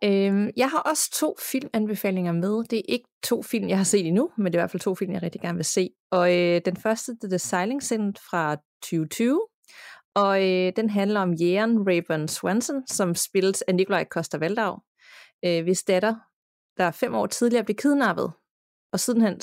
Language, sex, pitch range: Danish, female, 175-220 Hz